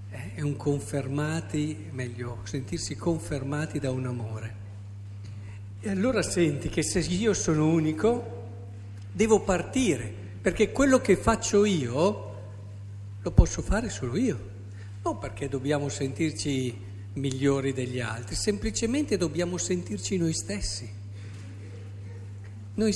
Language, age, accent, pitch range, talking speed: Italian, 50-69, native, 100-160 Hz, 105 wpm